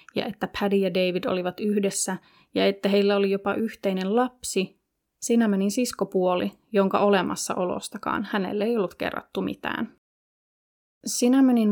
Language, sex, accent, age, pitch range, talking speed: Finnish, female, native, 30-49, 185-225 Hz, 125 wpm